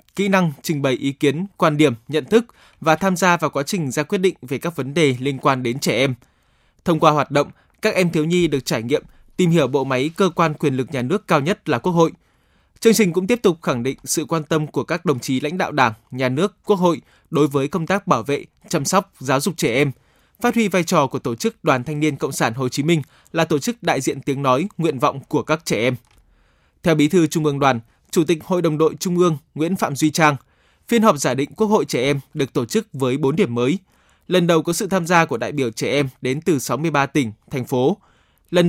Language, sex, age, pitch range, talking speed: Vietnamese, male, 20-39, 140-175 Hz, 255 wpm